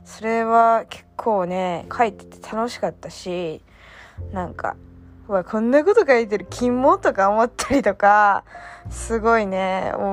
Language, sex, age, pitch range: Japanese, female, 20-39, 180-245 Hz